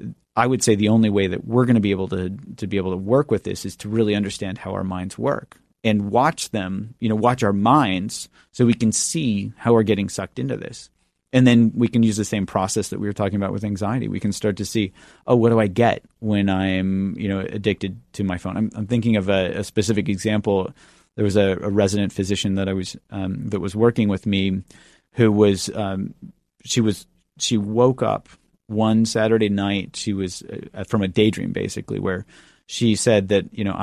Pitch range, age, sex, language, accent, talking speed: 100-115 Hz, 30-49, male, English, American, 220 wpm